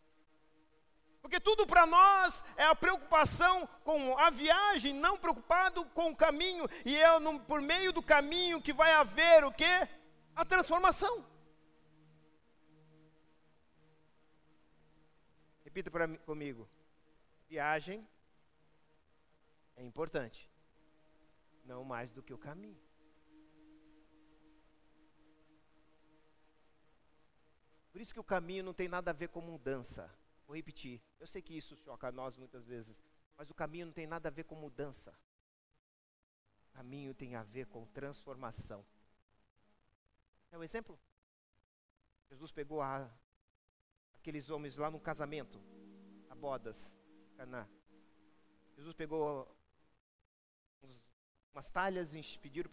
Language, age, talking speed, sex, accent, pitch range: Portuguese, 40-59, 115 wpm, male, Brazilian, 130-180 Hz